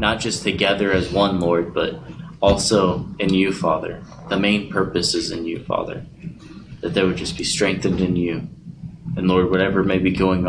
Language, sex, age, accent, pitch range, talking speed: English, male, 20-39, American, 90-100 Hz, 185 wpm